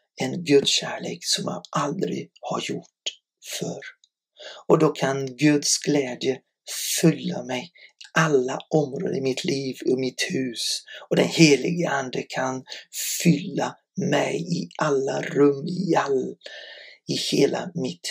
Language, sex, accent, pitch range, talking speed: Swedish, male, native, 150-185 Hz, 130 wpm